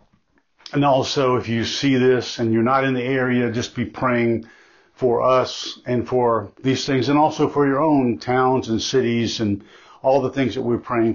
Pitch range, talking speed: 125-145 Hz, 195 wpm